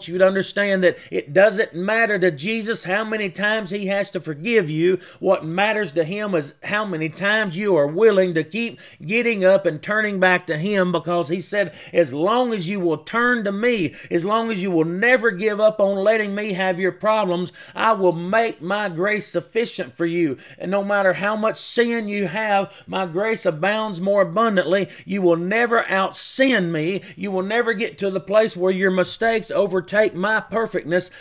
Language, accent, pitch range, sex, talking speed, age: English, American, 170-210 Hz, male, 195 wpm, 30-49